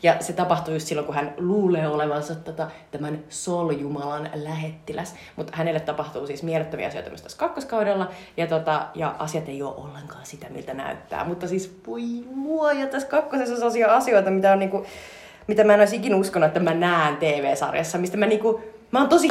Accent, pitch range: native, 155-205 Hz